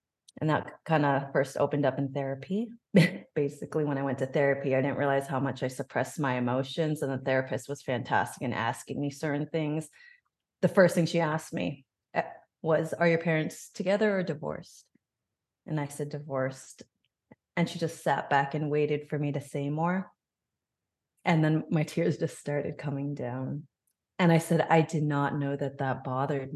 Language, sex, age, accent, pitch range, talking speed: English, female, 30-49, American, 135-165 Hz, 185 wpm